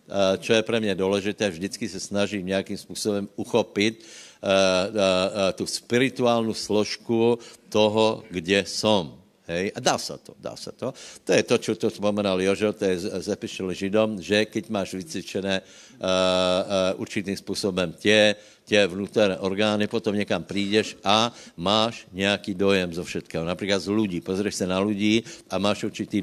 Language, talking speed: Slovak, 160 wpm